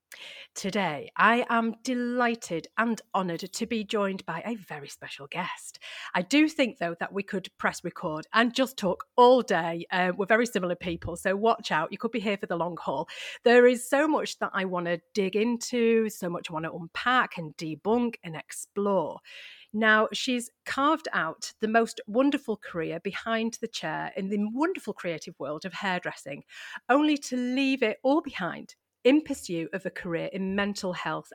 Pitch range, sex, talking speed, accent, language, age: 185-240 Hz, female, 185 wpm, British, English, 40-59